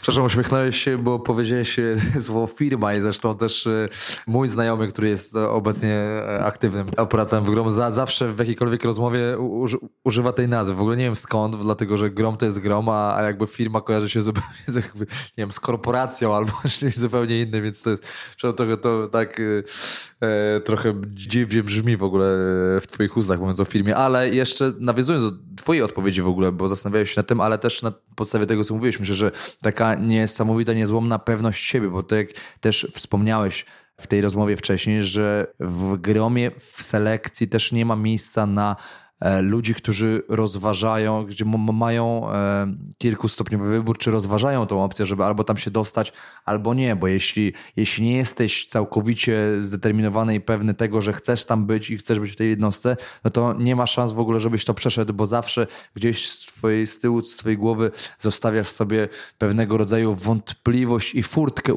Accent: native